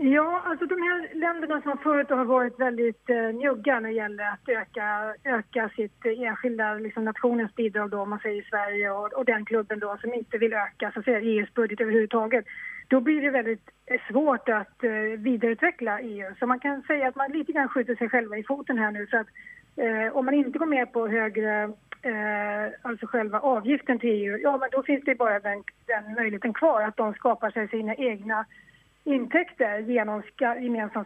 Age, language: 30-49, English